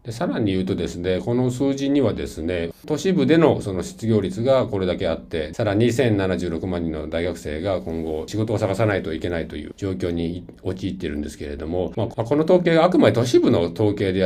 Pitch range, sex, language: 90-125 Hz, male, Japanese